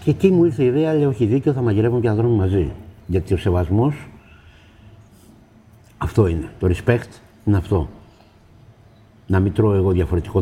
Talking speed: 165 wpm